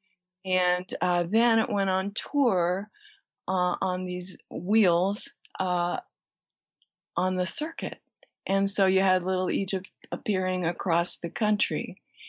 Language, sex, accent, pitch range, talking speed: English, female, American, 170-215 Hz, 120 wpm